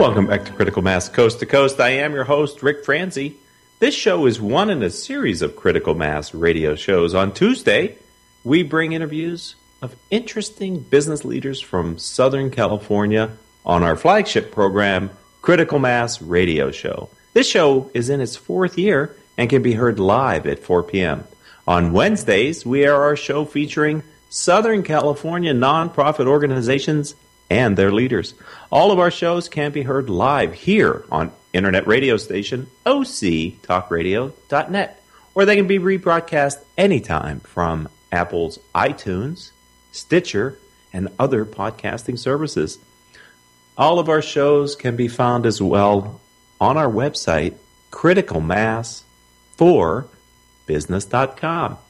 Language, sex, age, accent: English, male, 40-59, American